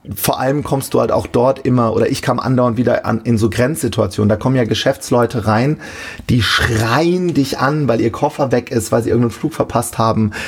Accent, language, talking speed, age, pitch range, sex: German, German, 210 wpm, 30-49, 115-135 Hz, male